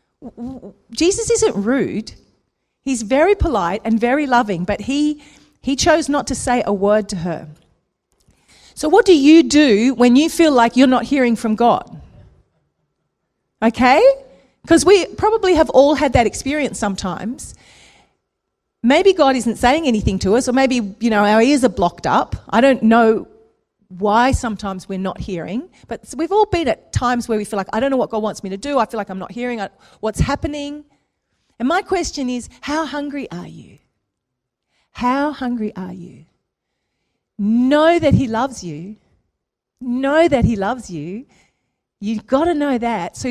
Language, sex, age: English, female, 40-59